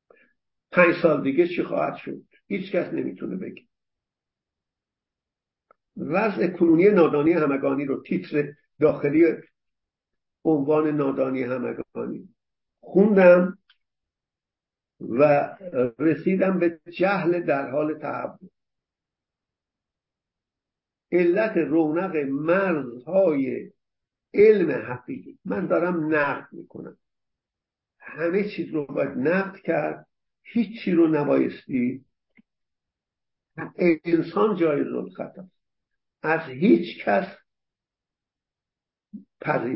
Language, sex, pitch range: English, male, 145-185 Hz